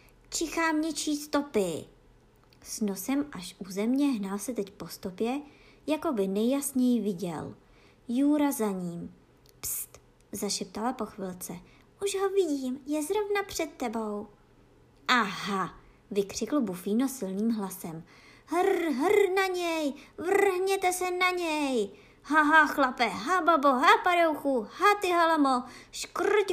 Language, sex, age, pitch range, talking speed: Czech, male, 20-39, 210-330 Hz, 125 wpm